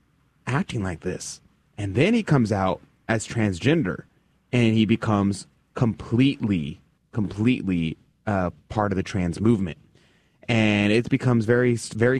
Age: 30-49